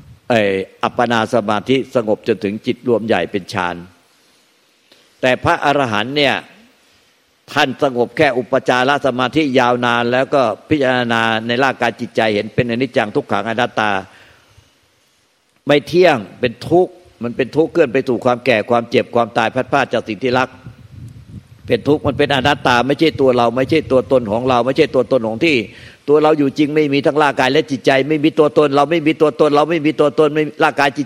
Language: Thai